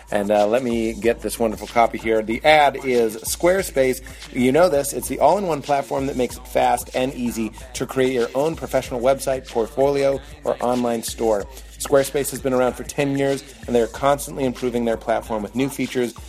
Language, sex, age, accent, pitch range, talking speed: English, male, 30-49, American, 115-140 Hz, 190 wpm